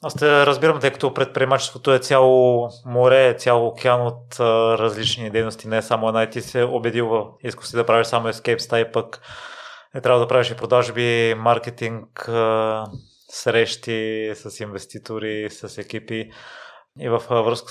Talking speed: 155 wpm